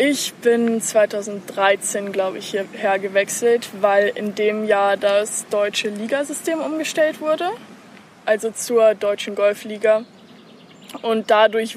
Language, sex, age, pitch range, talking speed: German, female, 20-39, 205-235 Hz, 110 wpm